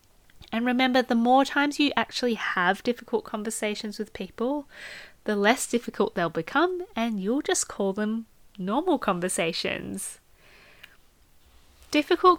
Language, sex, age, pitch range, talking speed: English, female, 20-39, 185-245 Hz, 120 wpm